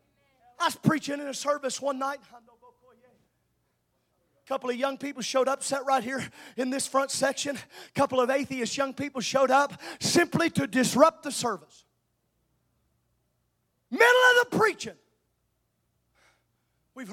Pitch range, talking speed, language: 245-315 Hz, 140 wpm, English